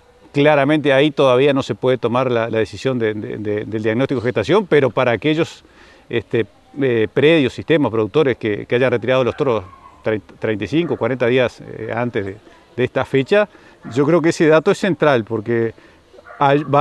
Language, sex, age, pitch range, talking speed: Spanish, male, 40-59, 120-155 Hz, 170 wpm